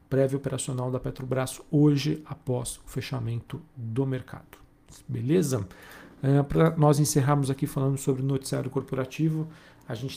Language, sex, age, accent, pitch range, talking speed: Portuguese, male, 40-59, Brazilian, 125-140 Hz, 130 wpm